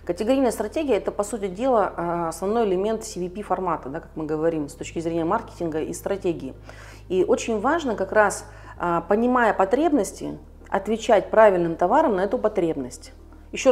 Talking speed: 140 wpm